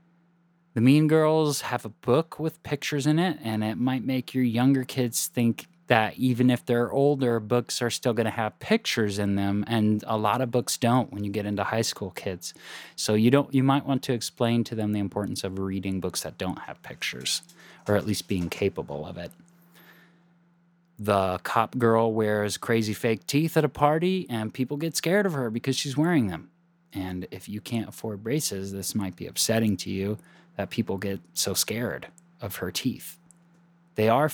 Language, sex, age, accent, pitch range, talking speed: English, male, 20-39, American, 110-170 Hz, 195 wpm